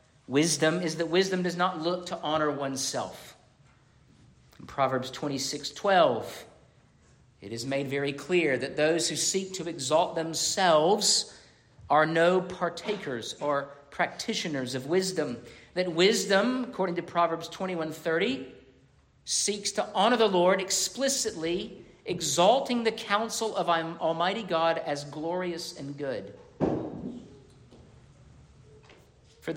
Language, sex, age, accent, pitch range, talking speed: English, male, 50-69, American, 150-195 Hz, 115 wpm